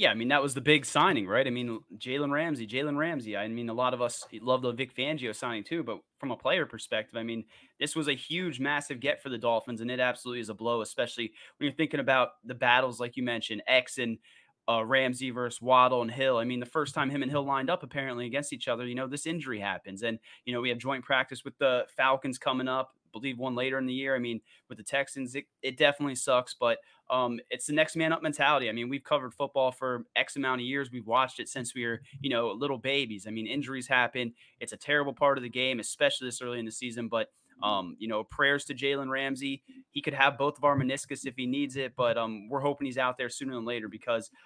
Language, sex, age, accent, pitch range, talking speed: English, male, 20-39, American, 120-140 Hz, 255 wpm